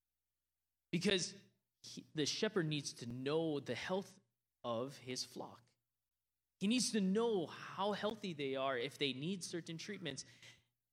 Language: English